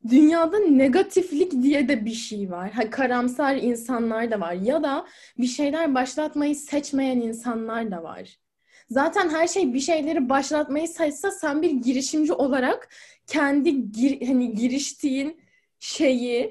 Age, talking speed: 10-29, 135 wpm